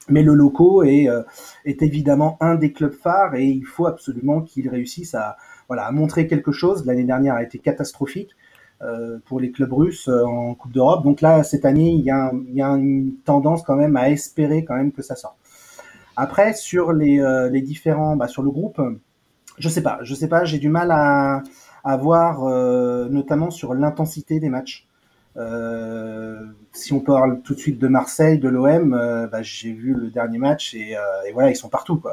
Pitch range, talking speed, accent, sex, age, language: 130-160 Hz, 210 wpm, French, male, 30-49, French